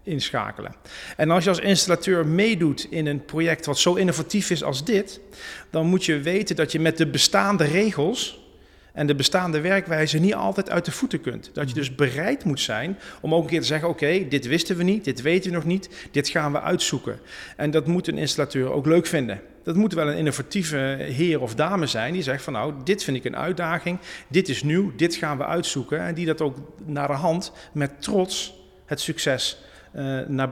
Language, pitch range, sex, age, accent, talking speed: Dutch, 140-175 Hz, male, 40-59, Dutch, 210 wpm